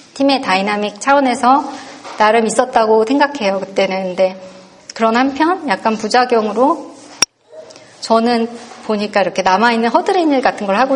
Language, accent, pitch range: Korean, native, 205-260 Hz